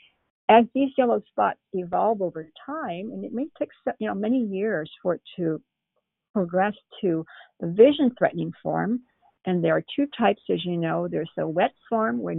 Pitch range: 170-240 Hz